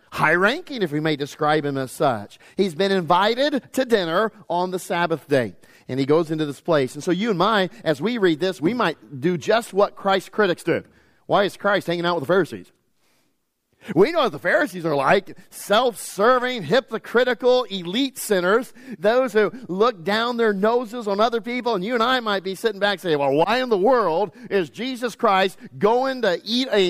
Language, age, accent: English, 40-59, American